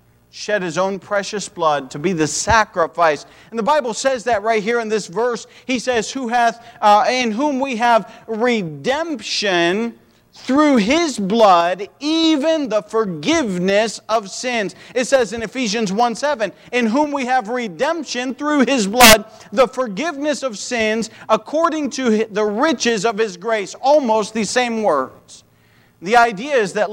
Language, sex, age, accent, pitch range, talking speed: English, male, 40-59, American, 195-250 Hz, 155 wpm